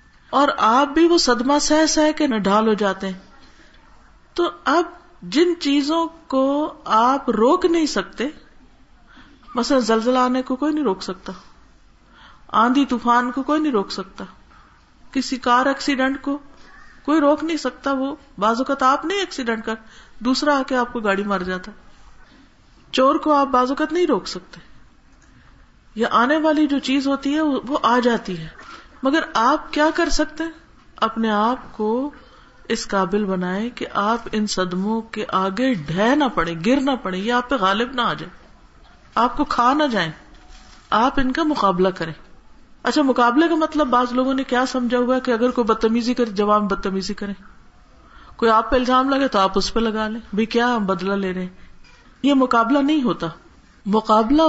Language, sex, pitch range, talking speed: Urdu, female, 215-280 Hz, 175 wpm